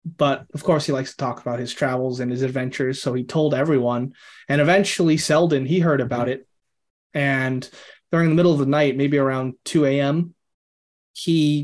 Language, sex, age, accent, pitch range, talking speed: English, male, 20-39, American, 125-155 Hz, 185 wpm